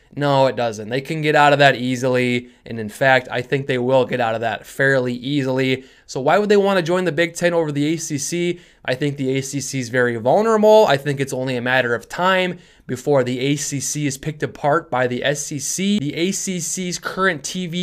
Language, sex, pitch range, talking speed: English, male, 130-165 Hz, 215 wpm